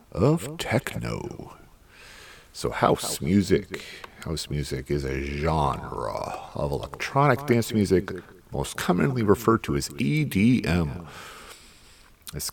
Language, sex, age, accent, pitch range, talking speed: English, male, 50-69, American, 75-120 Hz, 100 wpm